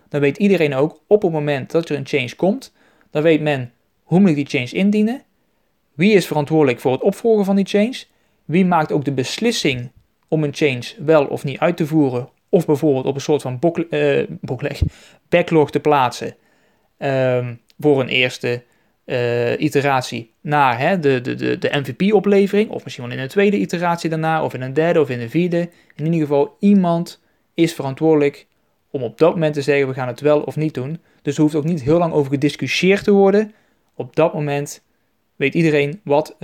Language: Dutch